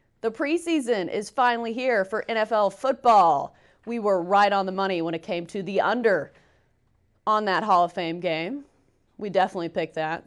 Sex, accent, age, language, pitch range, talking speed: female, American, 30-49, English, 170-215 Hz, 175 wpm